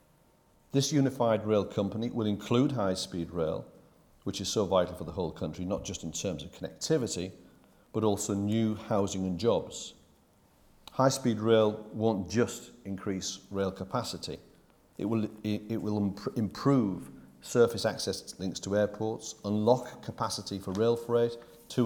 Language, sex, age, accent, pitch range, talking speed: English, male, 40-59, British, 95-120 Hz, 140 wpm